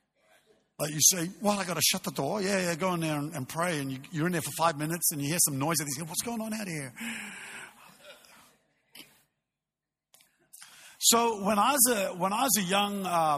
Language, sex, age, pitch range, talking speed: English, male, 50-69, 150-185 Hz, 200 wpm